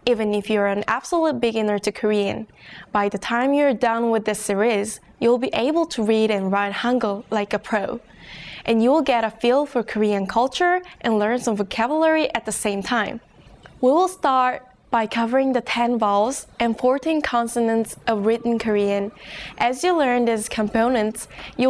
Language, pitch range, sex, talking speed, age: English, 210-245 Hz, female, 170 wpm, 10-29